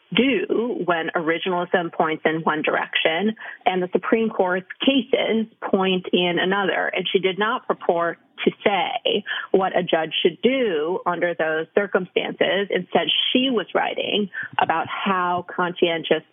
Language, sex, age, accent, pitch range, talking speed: English, female, 30-49, American, 175-220 Hz, 135 wpm